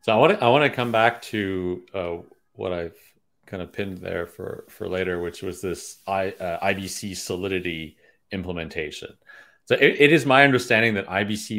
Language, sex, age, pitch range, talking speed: English, male, 30-49, 95-110 Hz, 185 wpm